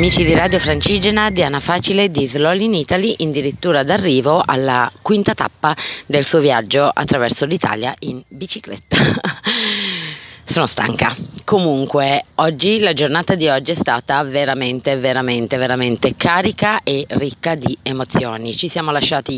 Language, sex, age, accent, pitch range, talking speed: Italian, female, 30-49, native, 135-170 Hz, 135 wpm